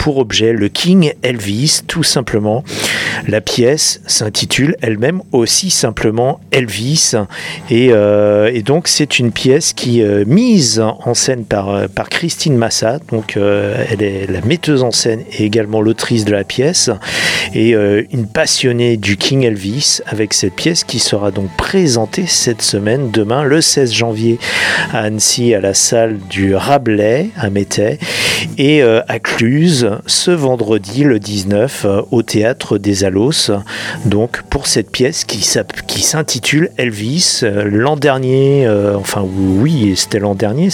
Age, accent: 40-59, French